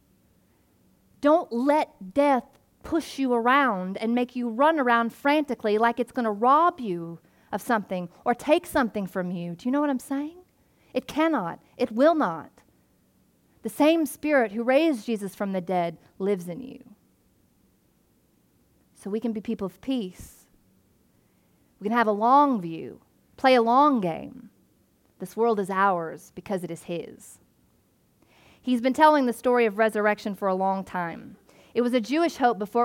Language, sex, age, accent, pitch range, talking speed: English, female, 30-49, American, 195-250 Hz, 165 wpm